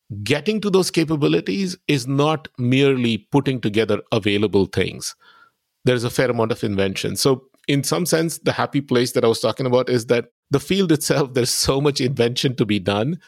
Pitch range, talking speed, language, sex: 105-140 Hz, 185 wpm, English, male